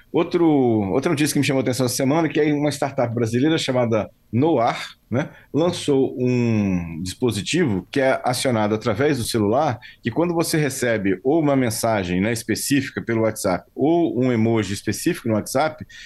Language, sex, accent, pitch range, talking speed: Portuguese, male, Brazilian, 110-140 Hz, 165 wpm